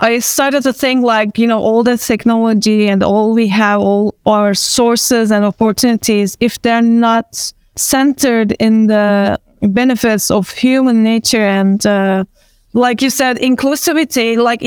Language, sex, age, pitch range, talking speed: English, female, 20-39, 225-270 Hz, 145 wpm